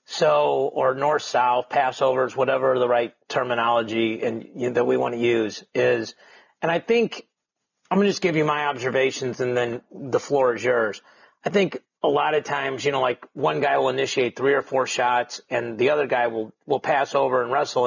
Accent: American